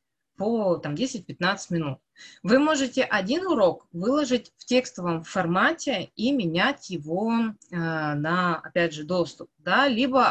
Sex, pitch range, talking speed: female, 170-245 Hz, 115 wpm